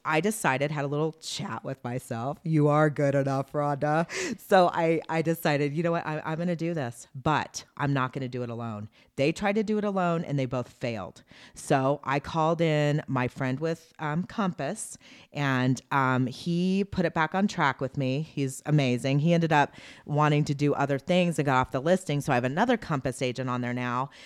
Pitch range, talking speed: 135-170 Hz, 215 wpm